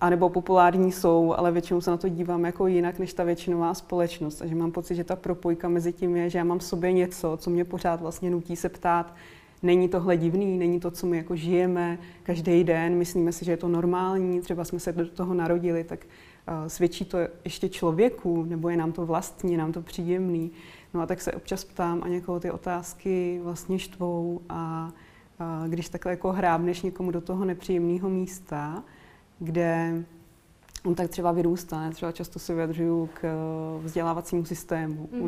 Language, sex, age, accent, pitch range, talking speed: Czech, female, 20-39, native, 170-180 Hz, 185 wpm